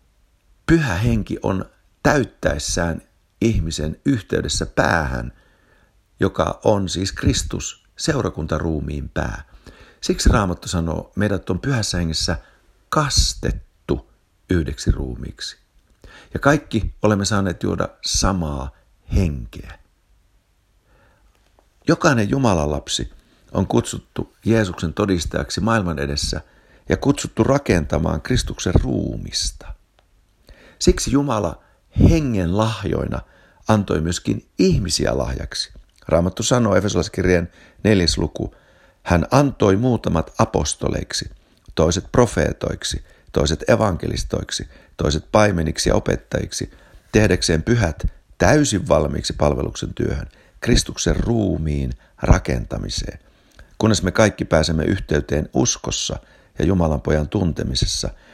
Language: Finnish